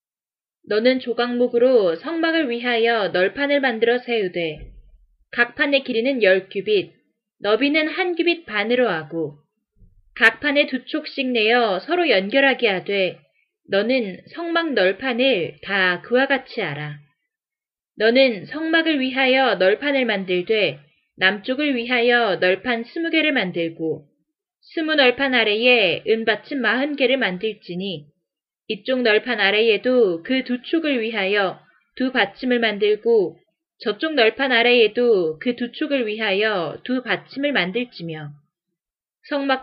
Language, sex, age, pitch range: Korean, female, 20-39, 195-275 Hz